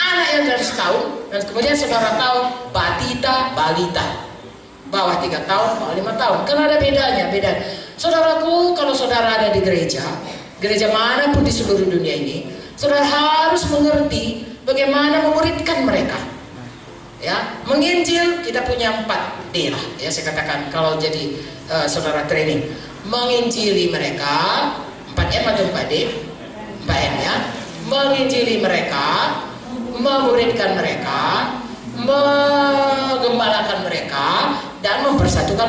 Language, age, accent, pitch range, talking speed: English, 40-59, Indonesian, 215-310 Hz, 110 wpm